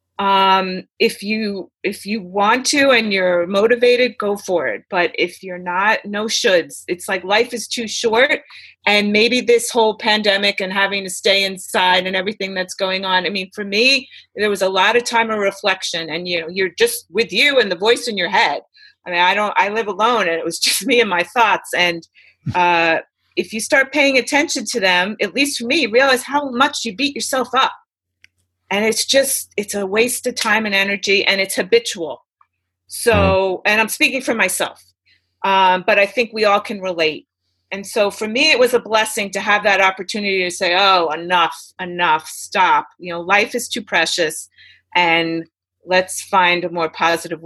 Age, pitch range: 30-49, 180-240 Hz